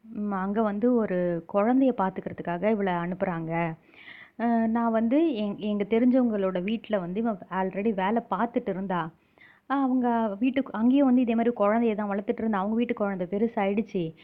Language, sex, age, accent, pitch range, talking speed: Tamil, female, 30-49, native, 200-255 Hz, 125 wpm